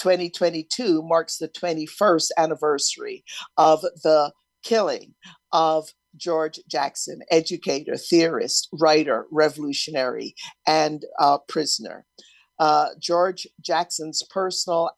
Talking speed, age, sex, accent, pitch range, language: 90 wpm, 50-69, female, American, 155-180 Hz, English